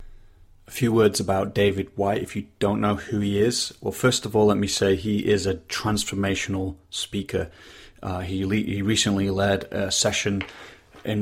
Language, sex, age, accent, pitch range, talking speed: English, male, 30-49, British, 95-110 Hz, 180 wpm